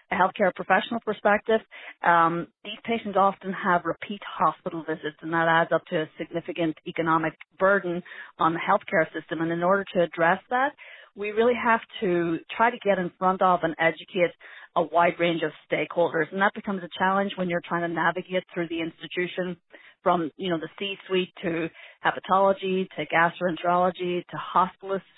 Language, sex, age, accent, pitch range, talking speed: English, female, 30-49, American, 170-200 Hz, 170 wpm